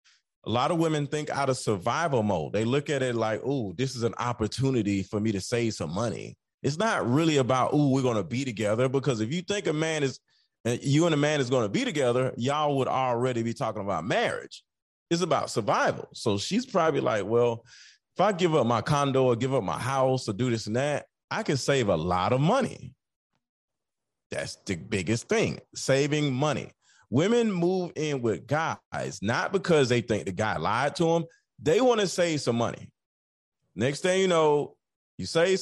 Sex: male